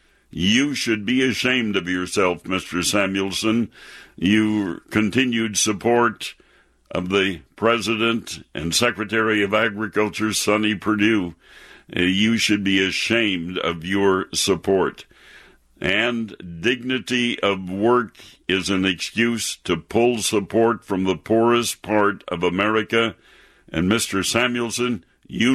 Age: 60-79